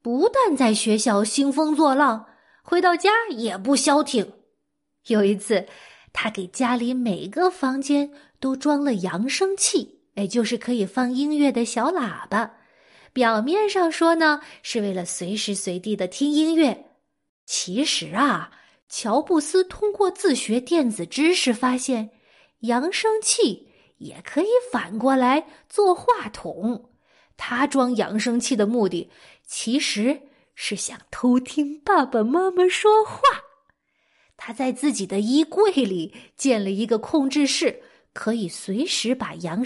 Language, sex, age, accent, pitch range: Chinese, female, 20-39, native, 225-320 Hz